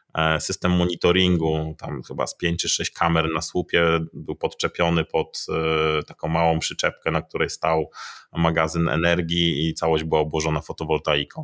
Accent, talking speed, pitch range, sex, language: native, 140 wpm, 80-90 Hz, male, Polish